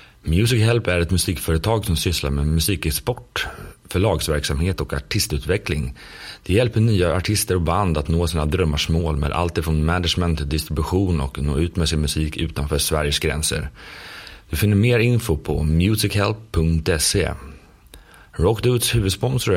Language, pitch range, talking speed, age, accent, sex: Swedish, 80-100 Hz, 145 wpm, 30-49, native, male